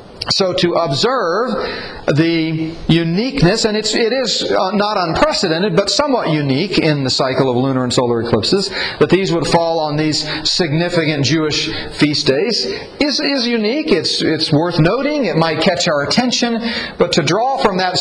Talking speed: 165 wpm